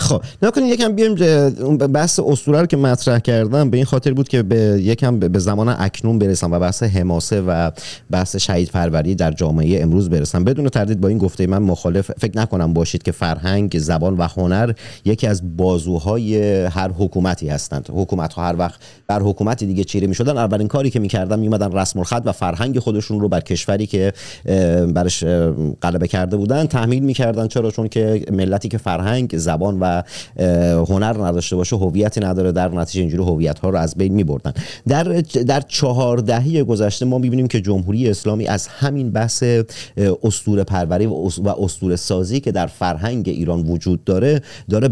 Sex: male